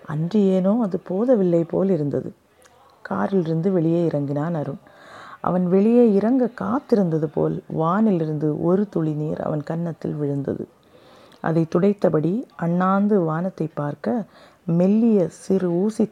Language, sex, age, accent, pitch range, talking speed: Tamil, female, 30-49, native, 155-195 Hz, 110 wpm